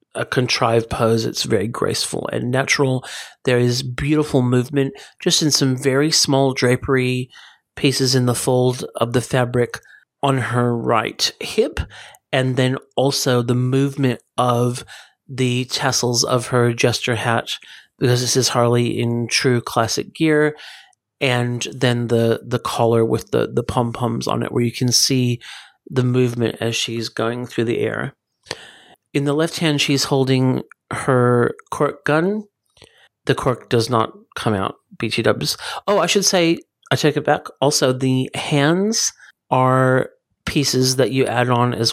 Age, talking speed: 40-59, 150 wpm